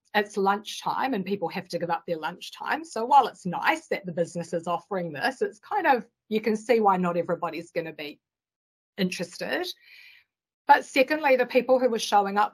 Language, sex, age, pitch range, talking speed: English, female, 30-49, 185-235 Hz, 195 wpm